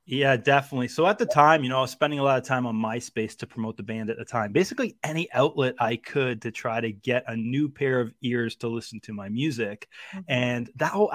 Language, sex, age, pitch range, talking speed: English, male, 30-49, 120-150 Hz, 250 wpm